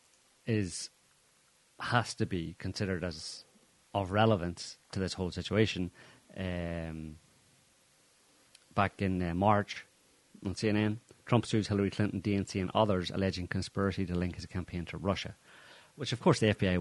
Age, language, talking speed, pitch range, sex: 30-49, English, 135 wpm, 90-115 Hz, male